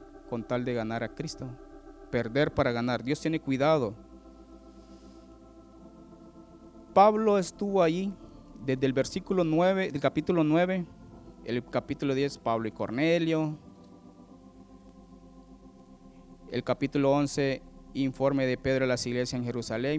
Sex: male